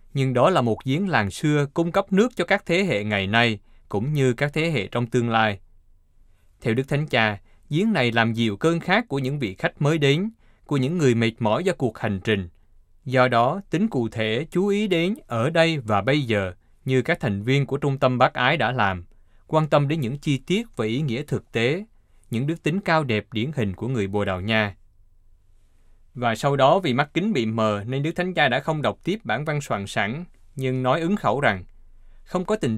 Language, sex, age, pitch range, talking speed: Vietnamese, male, 20-39, 105-150 Hz, 225 wpm